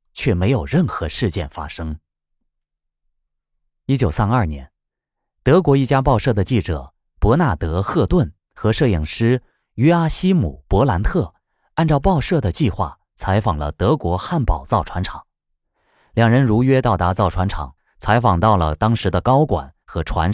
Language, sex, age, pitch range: Chinese, male, 20-39, 85-135 Hz